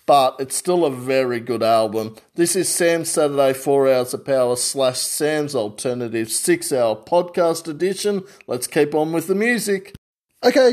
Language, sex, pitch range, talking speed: English, male, 135-180 Hz, 160 wpm